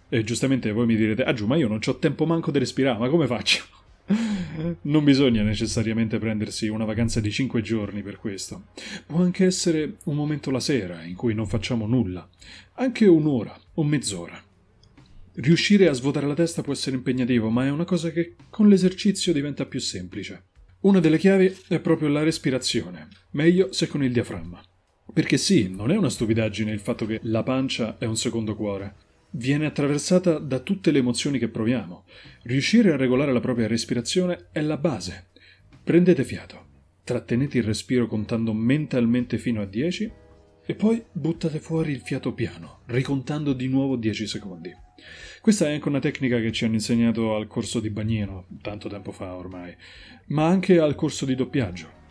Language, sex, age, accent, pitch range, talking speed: Italian, male, 30-49, native, 110-155 Hz, 175 wpm